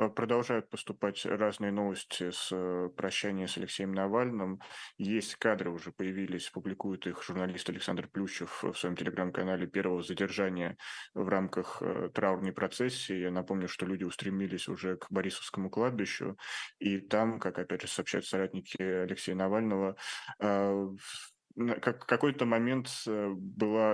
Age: 20-39